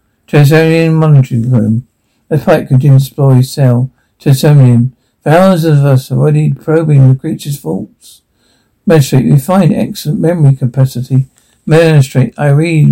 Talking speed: 130 wpm